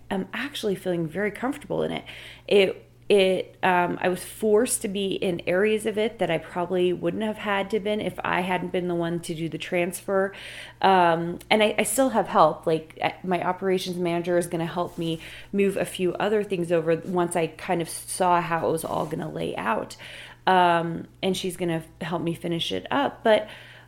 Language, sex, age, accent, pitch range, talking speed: English, female, 30-49, American, 175-210 Hz, 210 wpm